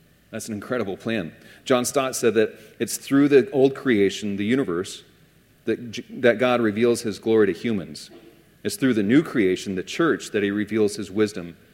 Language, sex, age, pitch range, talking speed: English, male, 40-59, 95-115 Hz, 180 wpm